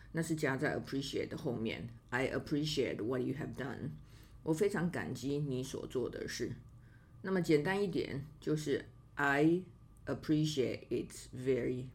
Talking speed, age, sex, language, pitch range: 65 wpm, 50-69, female, English, 120-155 Hz